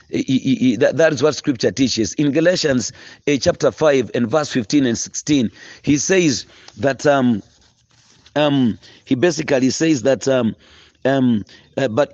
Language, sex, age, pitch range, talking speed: English, male, 40-59, 135-180 Hz, 160 wpm